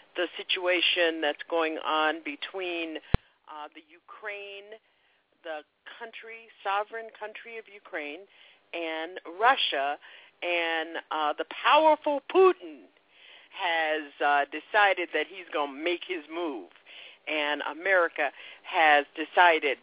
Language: English